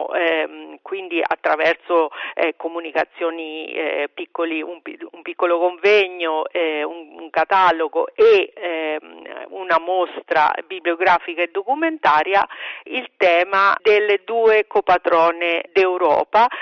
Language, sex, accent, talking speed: Italian, female, native, 100 wpm